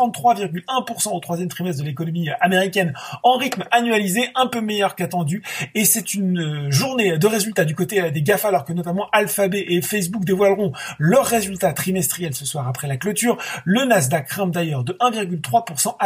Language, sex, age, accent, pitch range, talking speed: French, male, 40-59, French, 175-230 Hz, 170 wpm